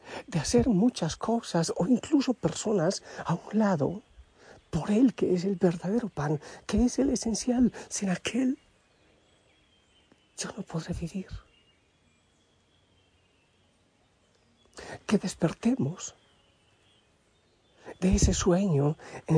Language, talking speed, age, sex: Spanish, 100 wpm, 60-79, male